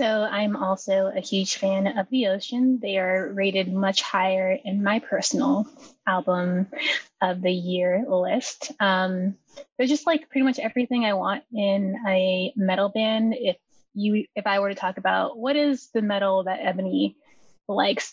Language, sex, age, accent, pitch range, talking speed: English, female, 10-29, American, 195-245 Hz, 165 wpm